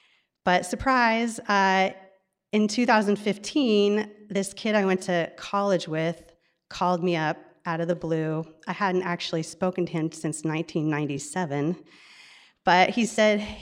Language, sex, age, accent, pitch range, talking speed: English, female, 30-49, American, 160-195 Hz, 130 wpm